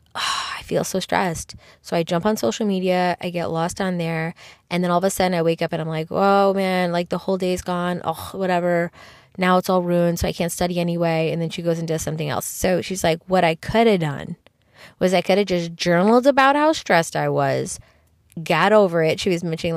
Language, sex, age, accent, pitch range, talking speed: English, female, 20-39, American, 170-200 Hz, 245 wpm